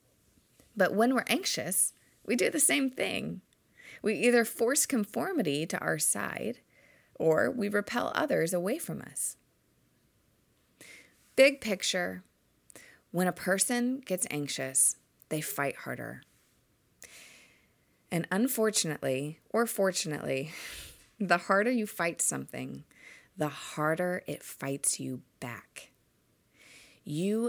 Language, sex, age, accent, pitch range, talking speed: English, female, 30-49, American, 160-215 Hz, 105 wpm